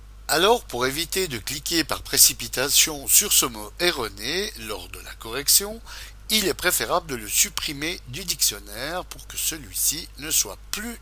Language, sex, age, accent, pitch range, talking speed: French, male, 60-79, French, 100-165 Hz, 160 wpm